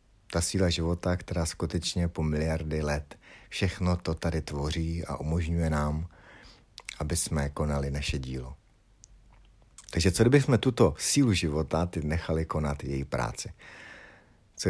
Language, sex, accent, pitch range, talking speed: Czech, male, native, 80-95 Hz, 125 wpm